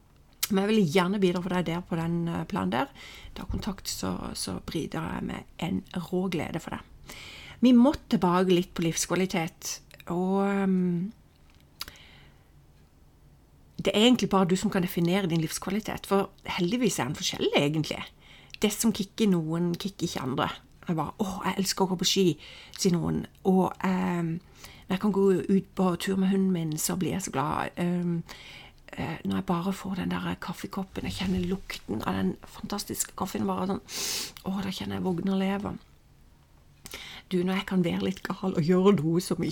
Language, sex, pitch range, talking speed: English, female, 175-195 Hz, 180 wpm